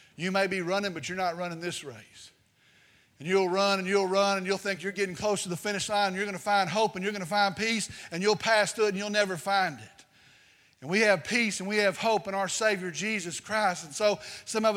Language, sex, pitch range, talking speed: English, male, 180-220 Hz, 265 wpm